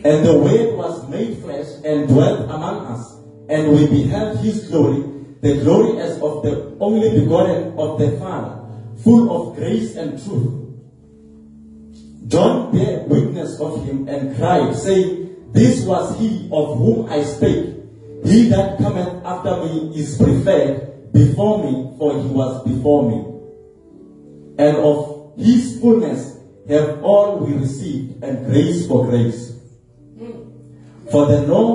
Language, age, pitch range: English, 40-59, 120-160 Hz